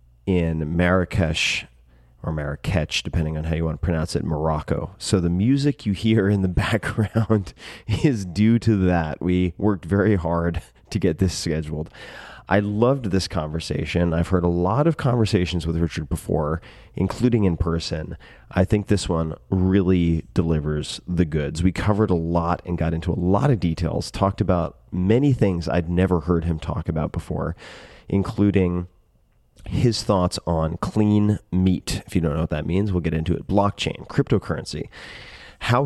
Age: 30-49